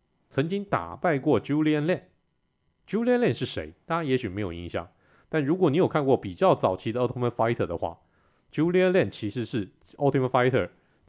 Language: Chinese